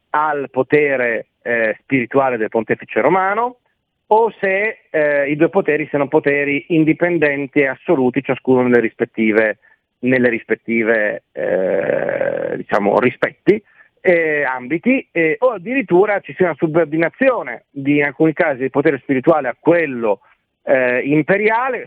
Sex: male